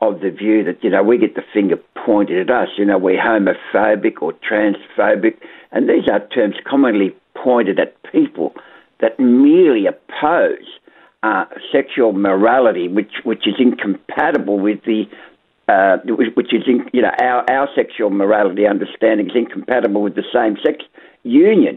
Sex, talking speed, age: male, 155 wpm, 60-79